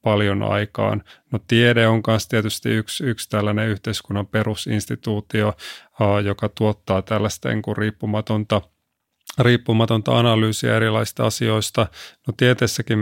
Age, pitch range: 30-49, 105-120 Hz